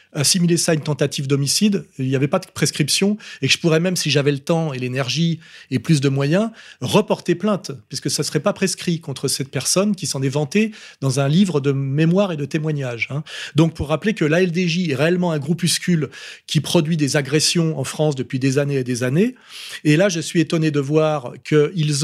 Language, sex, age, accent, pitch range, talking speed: French, male, 30-49, French, 145-180 Hz, 220 wpm